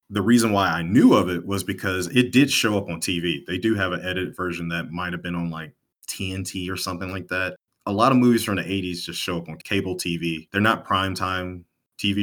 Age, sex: 30-49, male